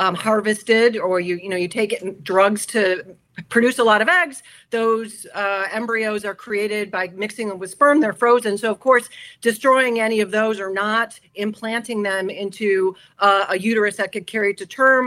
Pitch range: 195-235 Hz